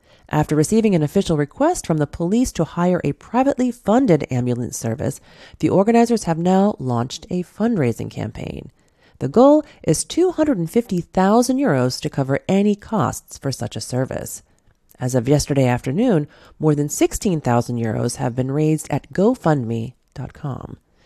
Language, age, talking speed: English, 30-49, 140 wpm